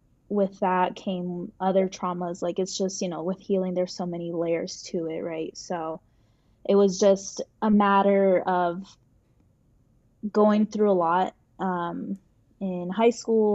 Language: English